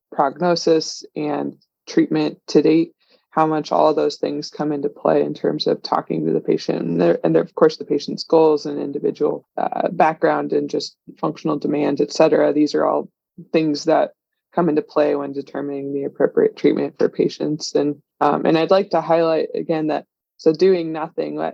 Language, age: English, 20-39